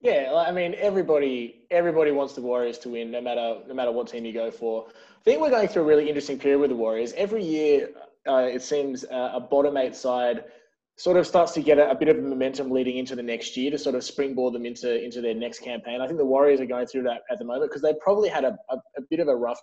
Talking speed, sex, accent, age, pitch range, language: 270 wpm, male, Australian, 20-39, 120-155 Hz, English